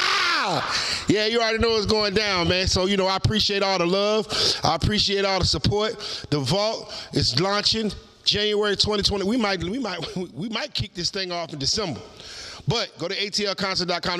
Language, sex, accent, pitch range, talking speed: English, male, American, 180-245 Hz, 180 wpm